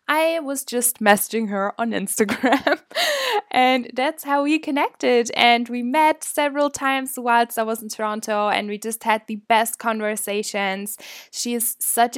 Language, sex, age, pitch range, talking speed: English, female, 10-29, 200-245 Hz, 160 wpm